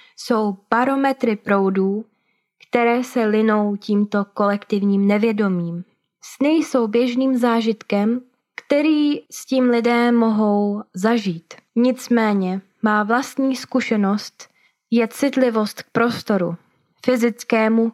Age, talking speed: 20-39, 95 wpm